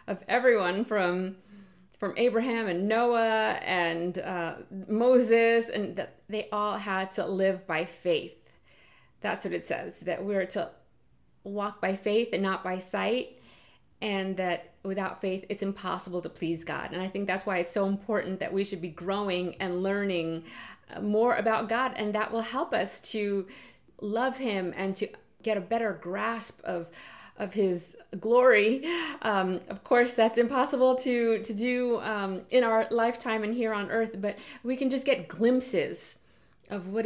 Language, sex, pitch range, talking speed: English, female, 185-225 Hz, 165 wpm